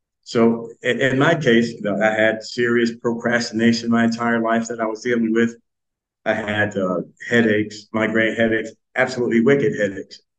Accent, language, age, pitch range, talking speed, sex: American, English, 50-69, 110-130 Hz, 155 wpm, male